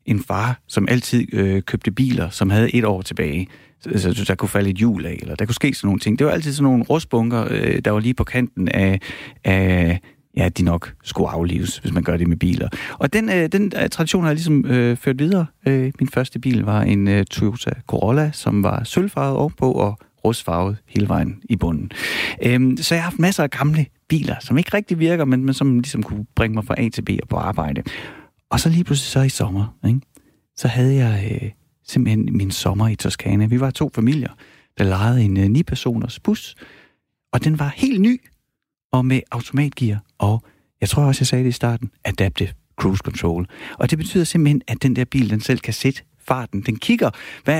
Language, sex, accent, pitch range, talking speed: Danish, male, native, 105-140 Hz, 215 wpm